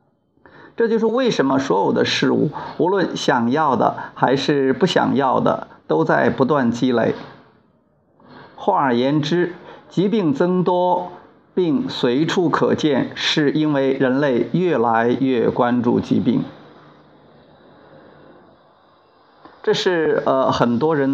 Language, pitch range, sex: Chinese, 130-190 Hz, male